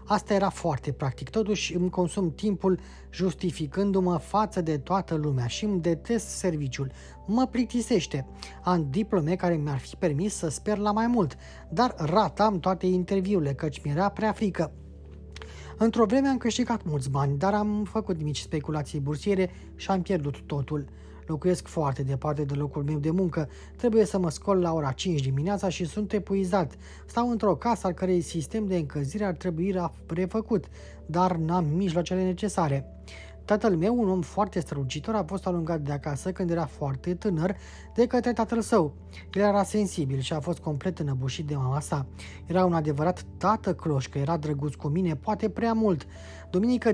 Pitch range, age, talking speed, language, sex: 150-200 Hz, 20-39, 170 wpm, Romanian, male